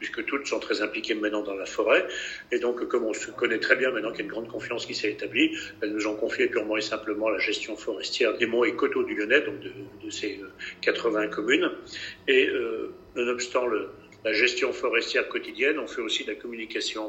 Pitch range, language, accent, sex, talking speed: 325-410 Hz, French, French, male, 220 wpm